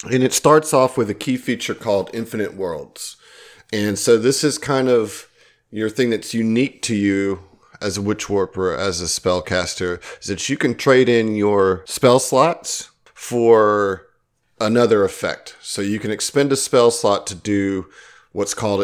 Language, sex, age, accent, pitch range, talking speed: English, male, 40-59, American, 100-115 Hz, 170 wpm